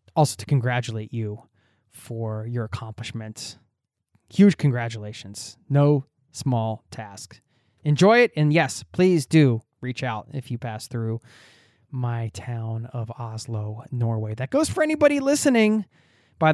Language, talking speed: English, 125 wpm